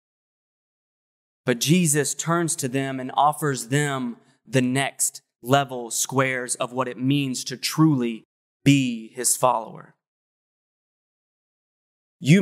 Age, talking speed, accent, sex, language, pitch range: 20-39, 105 wpm, American, male, English, 135-170 Hz